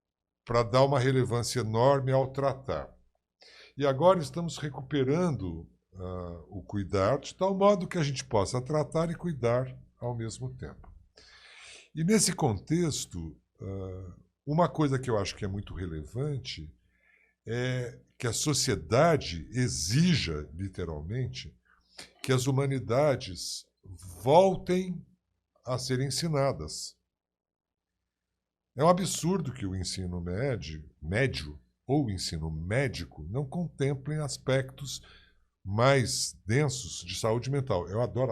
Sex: male